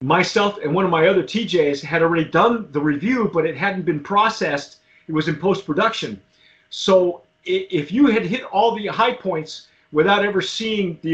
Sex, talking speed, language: male, 185 wpm, English